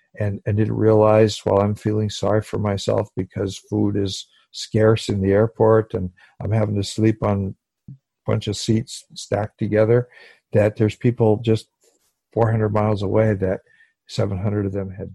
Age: 50-69